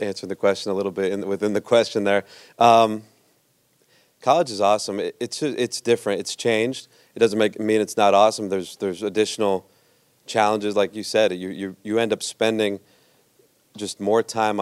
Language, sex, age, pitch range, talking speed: English, male, 30-49, 95-110 Hz, 180 wpm